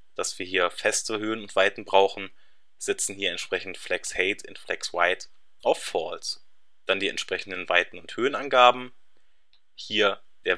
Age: 20-39